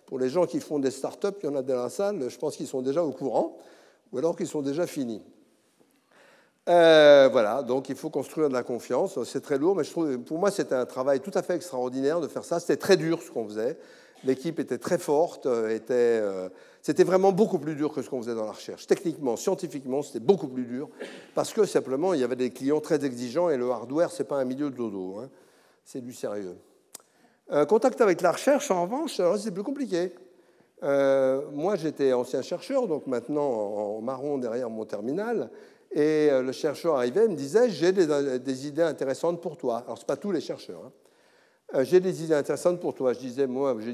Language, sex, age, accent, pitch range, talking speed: French, male, 60-79, French, 130-180 Hz, 220 wpm